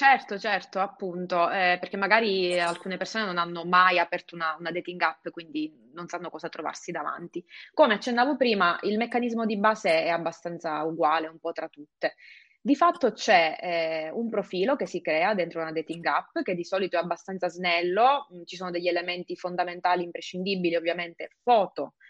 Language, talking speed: Italian, 170 wpm